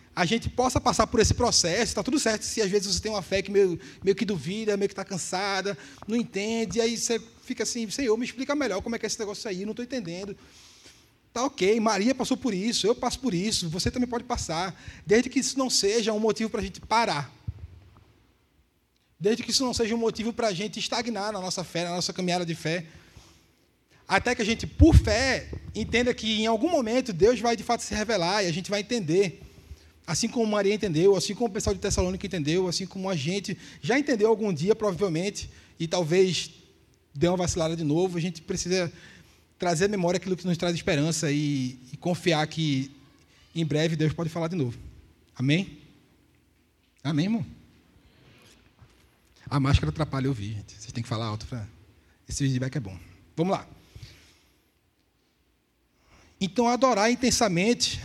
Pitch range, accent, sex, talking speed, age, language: 150-225 Hz, Brazilian, male, 190 wpm, 20-39, Portuguese